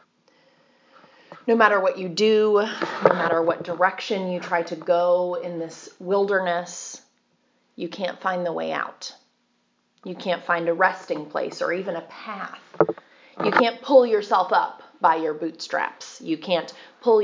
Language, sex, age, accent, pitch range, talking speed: English, female, 30-49, American, 170-255 Hz, 150 wpm